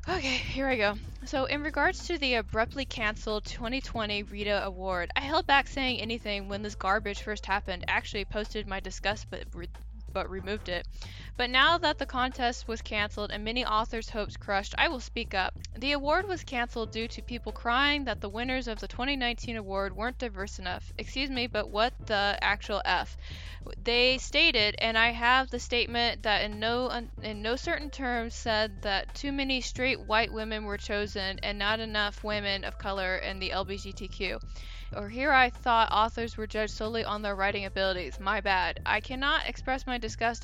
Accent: American